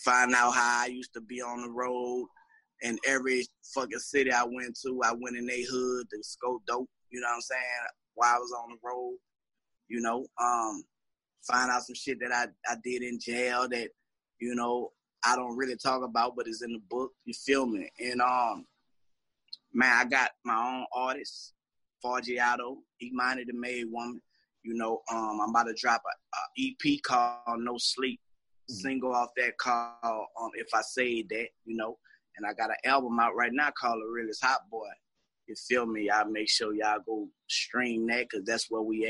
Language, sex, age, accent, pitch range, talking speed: English, male, 20-39, American, 115-125 Hz, 200 wpm